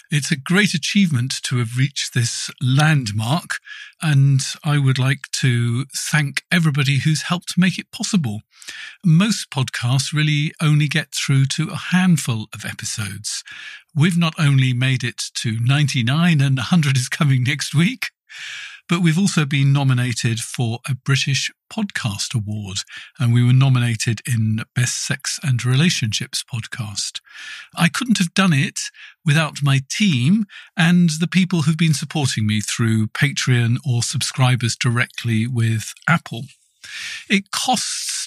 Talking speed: 140 wpm